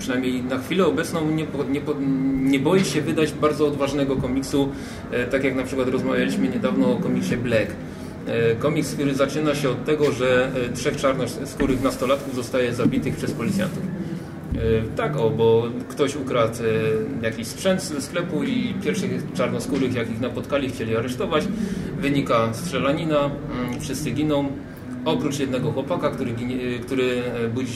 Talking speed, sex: 135 wpm, male